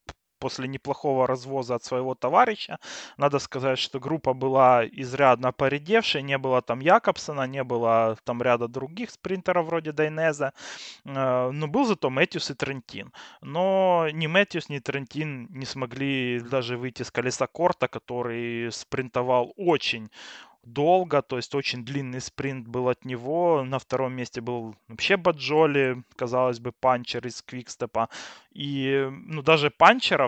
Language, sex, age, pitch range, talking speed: Russian, male, 20-39, 120-145 Hz, 140 wpm